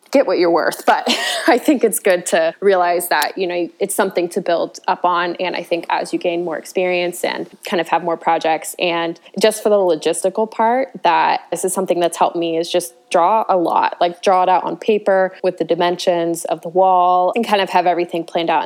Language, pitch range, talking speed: English, 170-200 Hz, 230 wpm